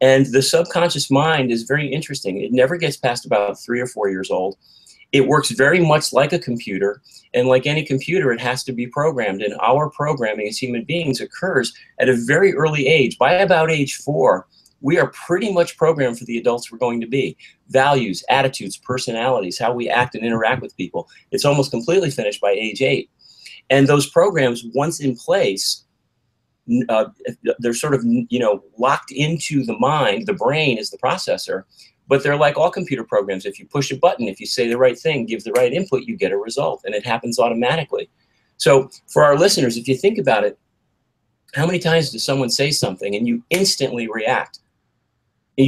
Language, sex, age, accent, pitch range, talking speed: English, male, 40-59, American, 120-155 Hz, 195 wpm